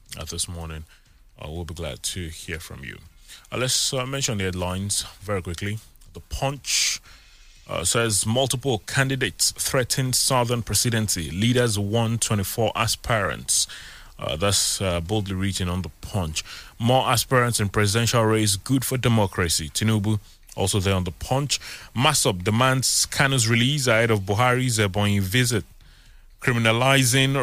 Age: 30-49